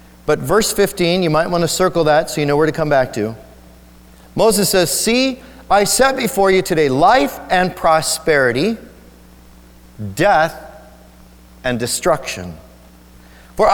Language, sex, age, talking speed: English, male, 40-59, 140 wpm